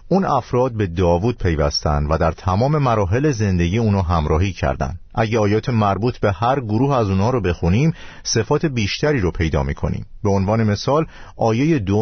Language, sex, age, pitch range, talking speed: Persian, male, 50-69, 85-120 Hz, 165 wpm